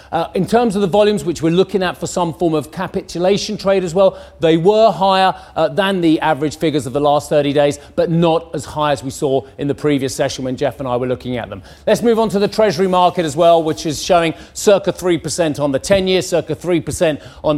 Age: 40-59